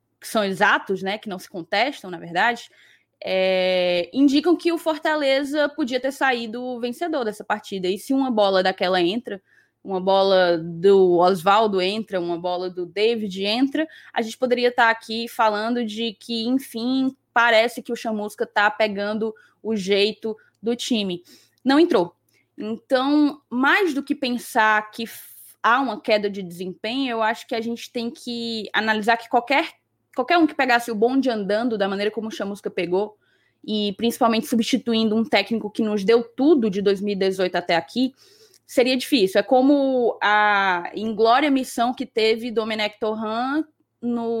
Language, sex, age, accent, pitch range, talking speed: Portuguese, female, 20-39, Brazilian, 205-250 Hz, 160 wpm